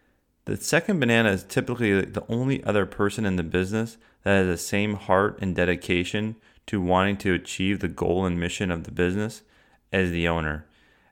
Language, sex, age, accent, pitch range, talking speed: English, male, 30-49, American, 85-105 Hz, 180 wpm